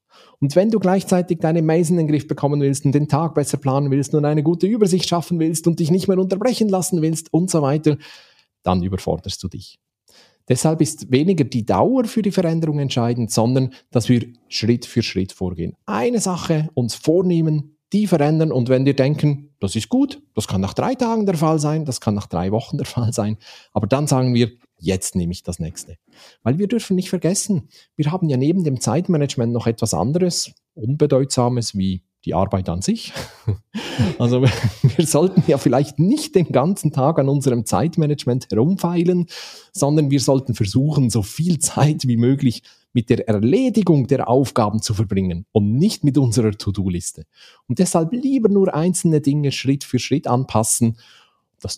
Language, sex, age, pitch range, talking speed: German, male, 40-59, 115-165 Hz, 180 wpm